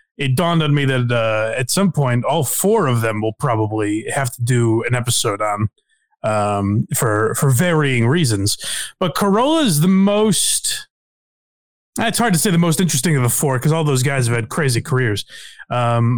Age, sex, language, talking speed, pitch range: 30-49, male, English, 185 wpm, 115-165 Hz